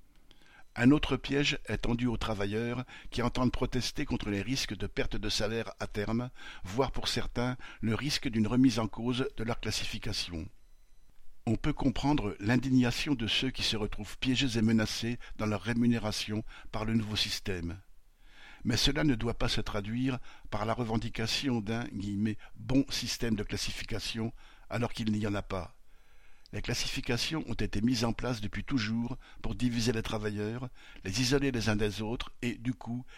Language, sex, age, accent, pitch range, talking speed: French, male, 60-79, French, 105-125 Hz, 170 wpm